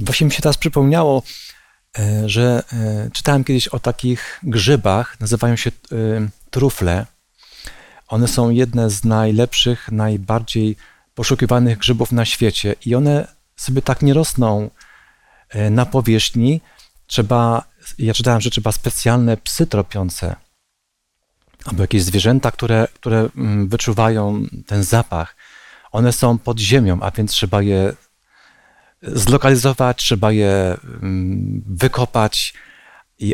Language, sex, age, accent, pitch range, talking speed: Polish, male, 40-59, native, 105-130 Hz, 110 wpm